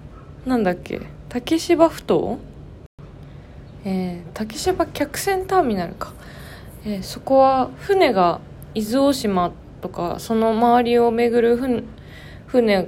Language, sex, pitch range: Japanese, female, 175-235 Hz